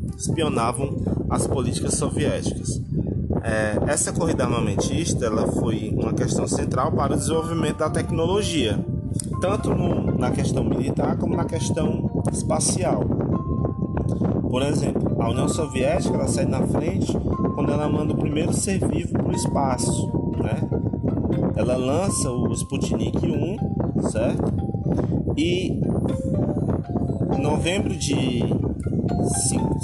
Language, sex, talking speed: Portuguese, male, 110 wpm